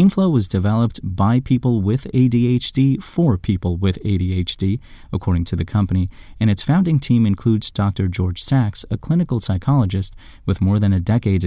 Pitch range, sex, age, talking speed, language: 95-125 Hz, male, 30-49, 160 wpm, English